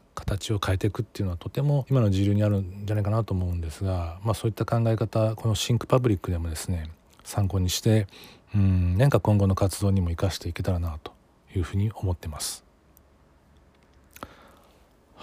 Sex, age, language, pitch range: male, 40-59, Japanese, 90-115 Hz